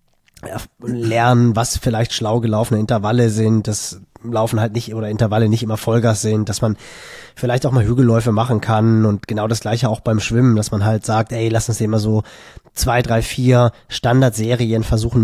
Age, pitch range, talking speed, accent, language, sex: 20-39, 105-120 Hz, 180 wpm, German, German, male